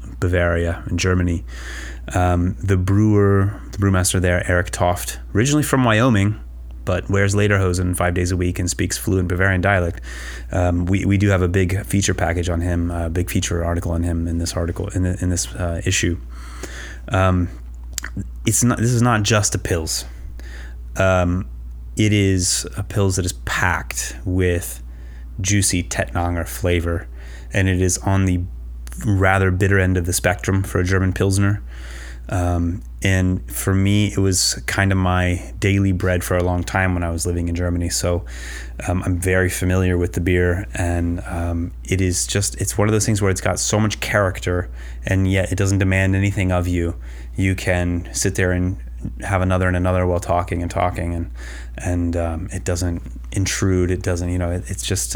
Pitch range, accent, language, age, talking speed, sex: 85-95 Hz, American, English, 30-49, 180 wpm, male